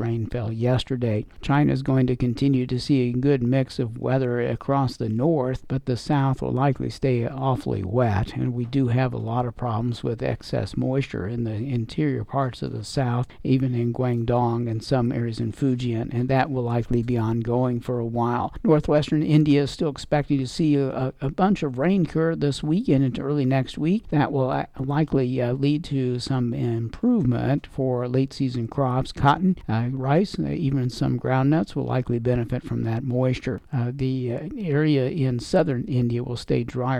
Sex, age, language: male, 60-79, English